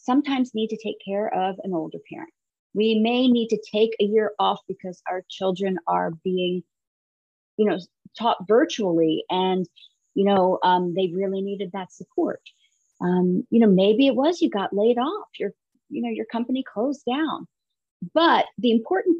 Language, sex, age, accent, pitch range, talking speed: English, female, 40-59, American, 185-230 Hz, 170 wpm